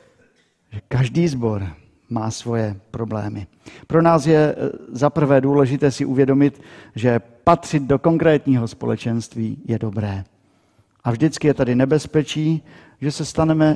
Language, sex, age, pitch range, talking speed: Czech, male, 50-69, 110-150 Hz, 120 wpm